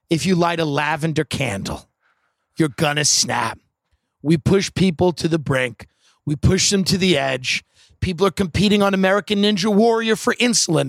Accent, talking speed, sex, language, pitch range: American, 165 wpm, male, English, 130-190 Hz